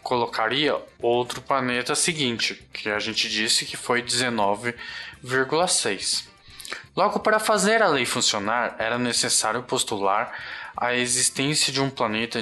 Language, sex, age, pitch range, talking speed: Portuguese, male, 20-39, 115-150 Hz, 120 wpm